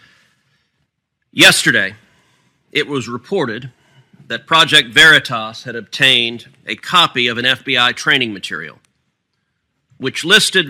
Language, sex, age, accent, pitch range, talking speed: English, male, 40-59, American, 130-165 Hz, 100 wpm